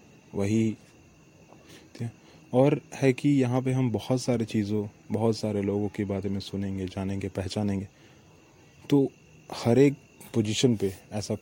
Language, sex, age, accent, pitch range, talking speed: English, male, 30-49, Indian, 100-125 Hz, 130 wpm